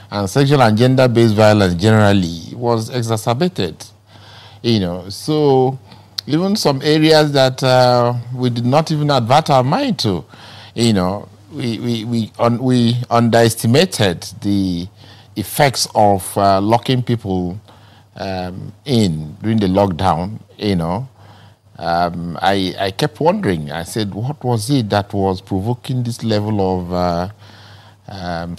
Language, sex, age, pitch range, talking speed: English, male, 50-69, 95-115 Hz, 130 wpm